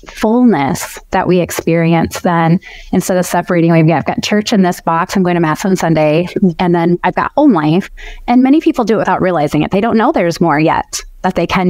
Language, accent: English, American